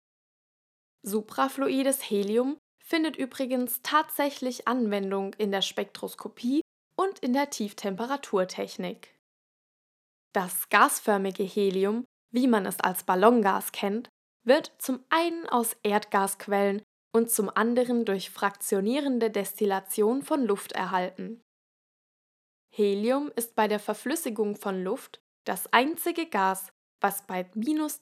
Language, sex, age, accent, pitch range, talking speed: German, female, 10-29, German, 200-250 Hz, 105 wpm